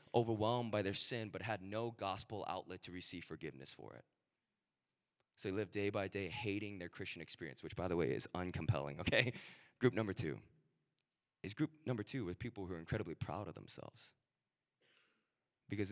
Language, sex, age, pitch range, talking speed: English, male, 20-39, 90-110 Hz, 175 wpm